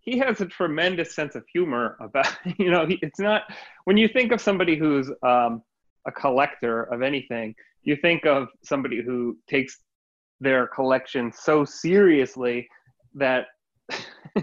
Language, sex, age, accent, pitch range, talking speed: English, male, 30-49, American, 130-185 Hz, 140 wpm